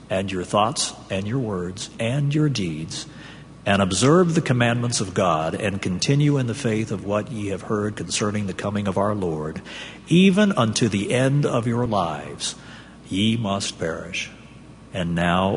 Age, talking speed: 50-69, 165 wpm